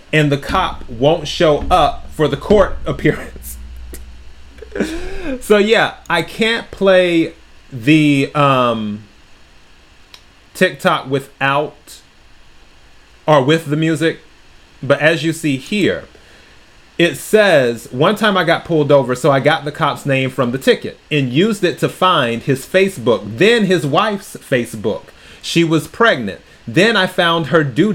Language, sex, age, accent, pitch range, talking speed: English, male, 30-49, American, 135-180 Hz, 140 wpm